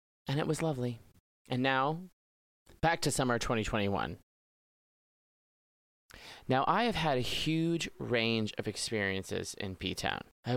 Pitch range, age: 105-130 Hz, 20-39